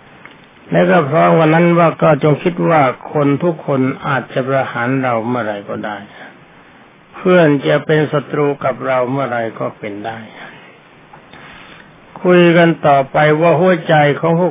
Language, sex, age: Thai, male, 60-79